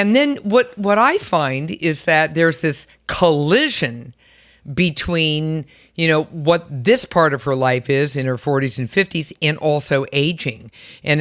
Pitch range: 140-180 Hz